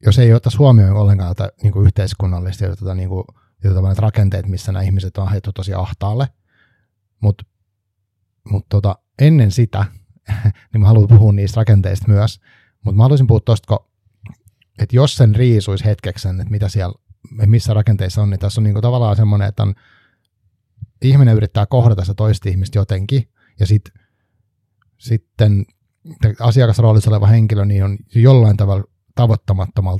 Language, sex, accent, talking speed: Finnish, male, native, 120 wpm